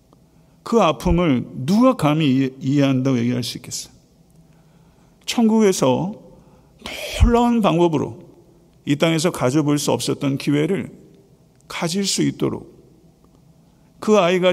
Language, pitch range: Korean, 145-190 Hz